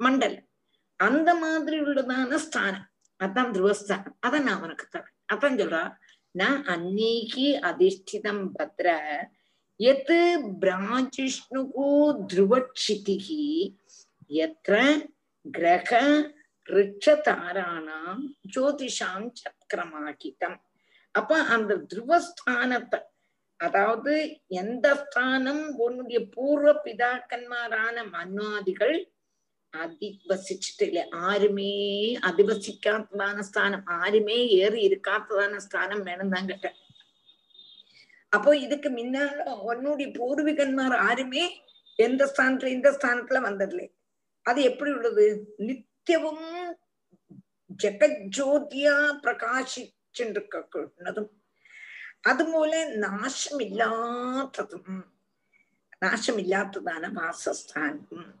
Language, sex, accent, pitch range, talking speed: Tamil, female, native, 200-285 Hz, 45 wpm